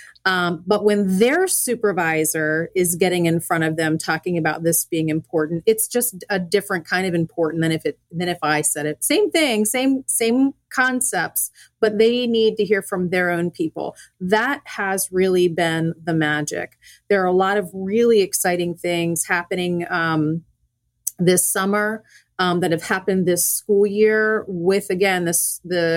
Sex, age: female, 30-49